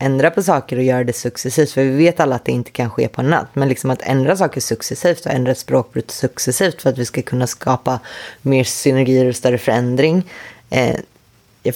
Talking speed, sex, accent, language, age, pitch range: 205 wpm, female, native, Swedish, 20-39, 125-145 Hz